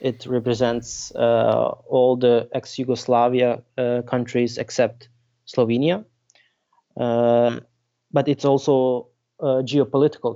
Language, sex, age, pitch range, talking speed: English, male, 20-39, 120-130 Hz, 85 wpm